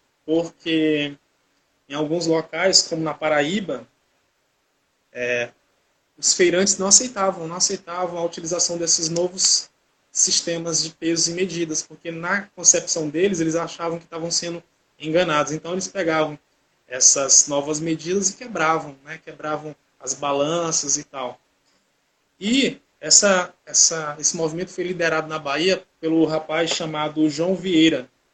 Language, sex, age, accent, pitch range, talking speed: Portuguese, male, 20-39, Brazilian, 150-180 Hz, 130 wpm